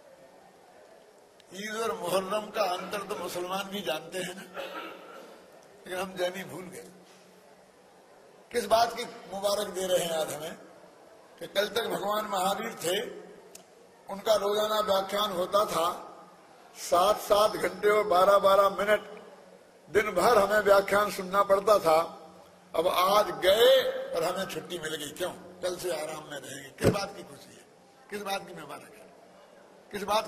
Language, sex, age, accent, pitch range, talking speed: Hindi, male, 60-79, native, 180-215 Hz, 145 wpm